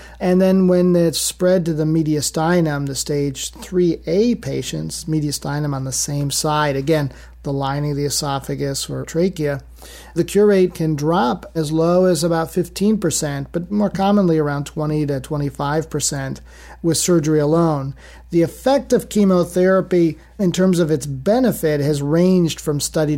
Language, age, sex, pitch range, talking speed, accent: English, 40-59, male, 145-175 Hz, 150 wpm, American